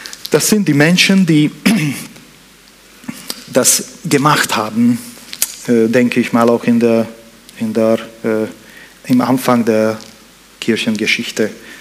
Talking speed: 105 wpm